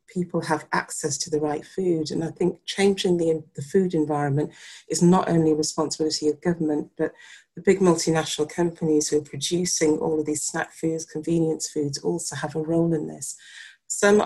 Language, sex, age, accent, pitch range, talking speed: English, female, 40-59, British, 150-165 Hz, 185 wpm